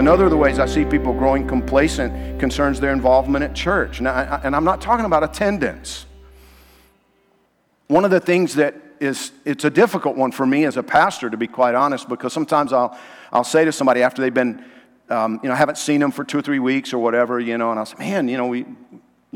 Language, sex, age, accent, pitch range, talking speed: English, male, 50-69, American, 125-165 Hz, 235 wpm